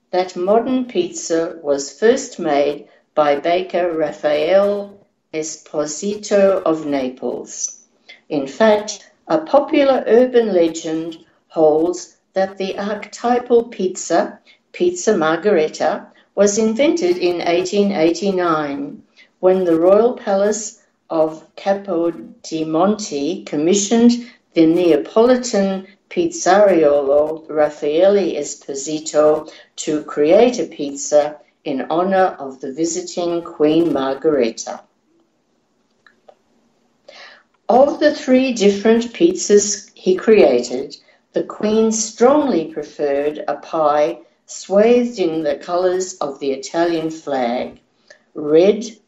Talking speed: 90 wpm